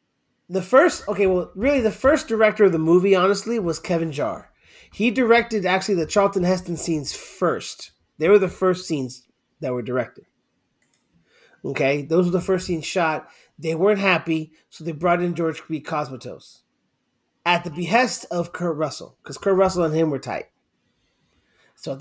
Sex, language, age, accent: male, English, 30-49, American